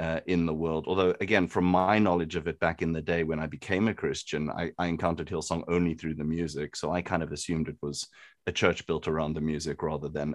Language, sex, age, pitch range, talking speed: English, male, 30-49, 80-115 Hz, 250 wpm